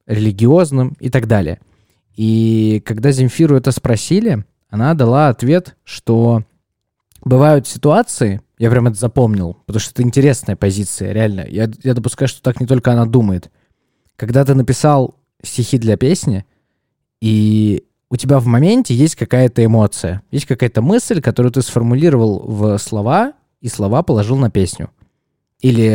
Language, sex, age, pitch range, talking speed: Russian, male, 20-39, 110-135 Hz, 145 wpm